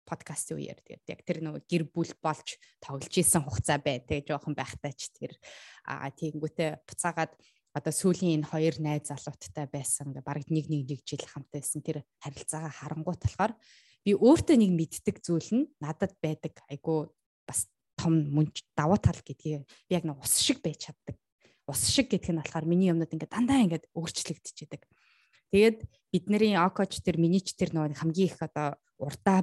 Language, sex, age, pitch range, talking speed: English, female, 20-39, 150-190 Hz, 65 wpm